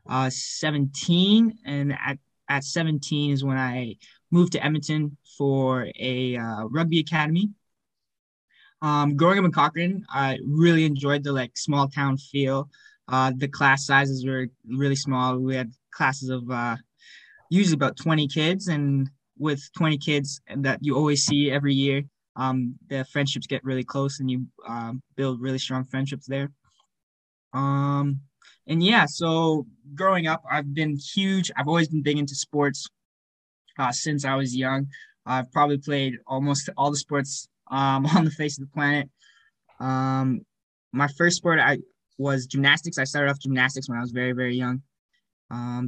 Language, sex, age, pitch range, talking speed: English, male, 20-39, 130-150 Hz, 160 wpm